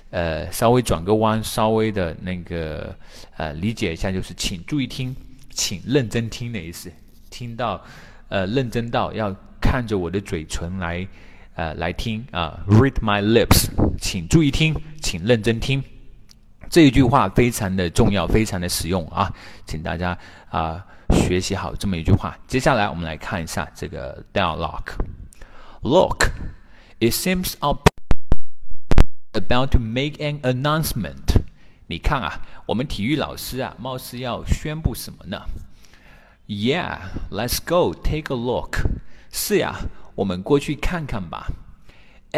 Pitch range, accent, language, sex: 90-135 Hz, native, Chinese, male